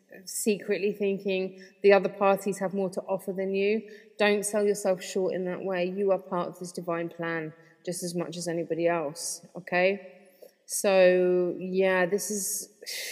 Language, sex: English, female